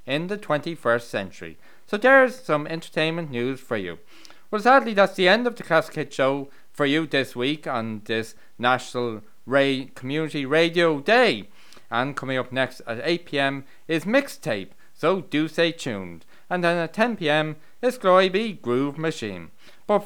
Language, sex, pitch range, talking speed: English, male, 130-190 Hz, 165 wpm